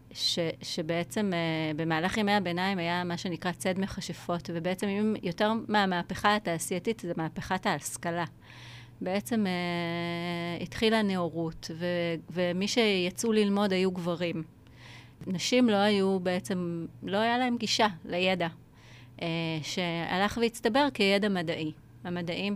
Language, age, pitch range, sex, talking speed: Hebrew, 30-49, 170-205 Hz, female, 115 wpm